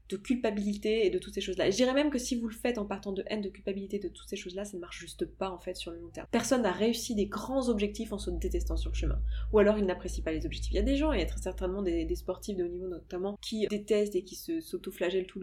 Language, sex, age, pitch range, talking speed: French, female, 20-39, 185-220 Hz, 310 wpm